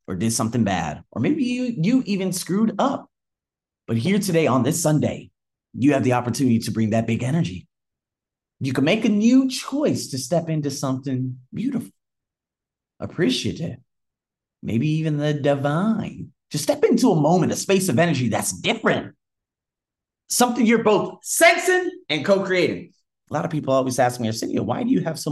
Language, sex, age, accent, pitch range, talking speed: English, male, 30-49, American, 110-160 Hz, 170 wpm